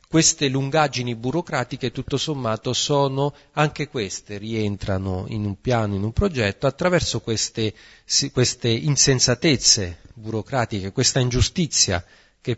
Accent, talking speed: native, 110 wpm